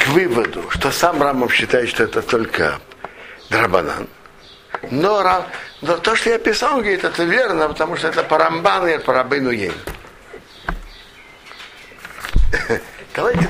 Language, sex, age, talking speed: Russian, male, 60-79, 110 wpm